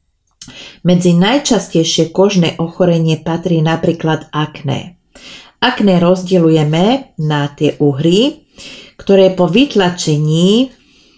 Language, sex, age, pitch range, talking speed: Slovak, female, 40-59, 160-195 Hz, 80 wpm